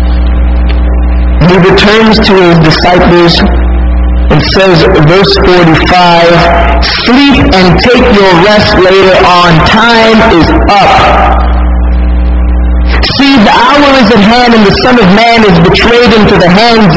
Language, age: English, 50-69